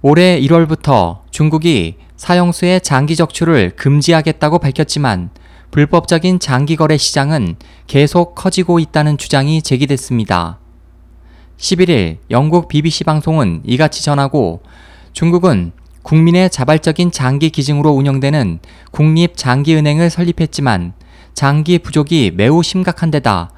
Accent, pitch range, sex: native, 115-165 Hz, male